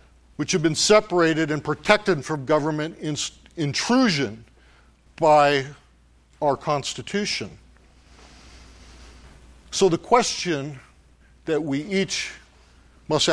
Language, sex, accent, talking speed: English, male, American, 85 wpm